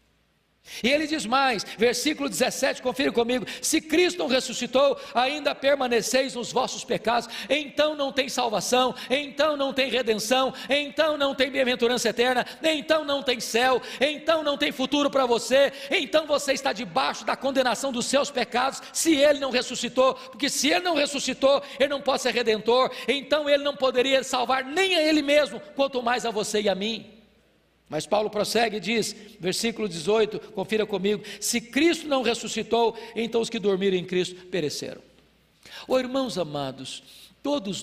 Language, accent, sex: Portuguese, Brazilian, male